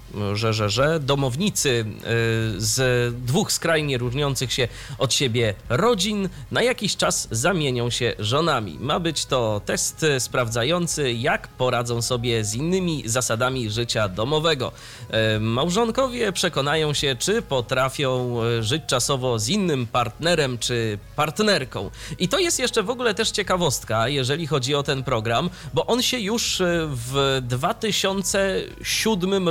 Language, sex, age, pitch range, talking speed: Polish, male, 30-49, 115-150 Hz, 130 wpm